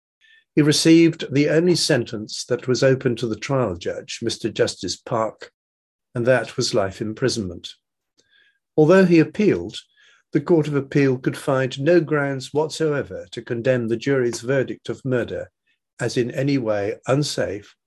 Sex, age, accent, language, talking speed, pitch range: male, 50-69, British, English, 150 wpm, 115-150 Hz